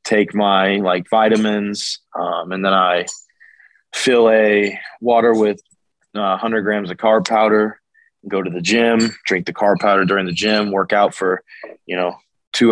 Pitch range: 95-110 Hz